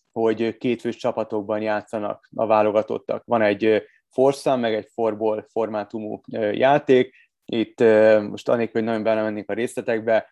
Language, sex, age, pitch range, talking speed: Hungarian, male, 30-49, 105-120 Hz, 130 wpm